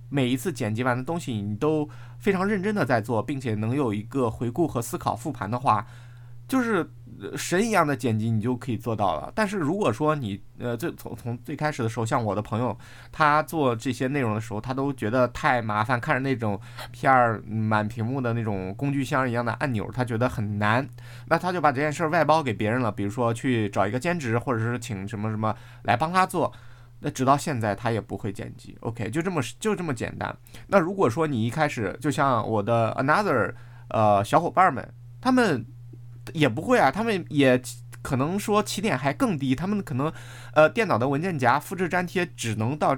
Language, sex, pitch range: Chinese, male, 115-155 Hz